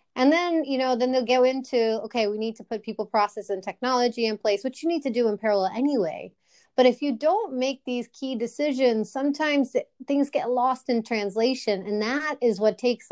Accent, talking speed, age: American, 210 wpm, 30-49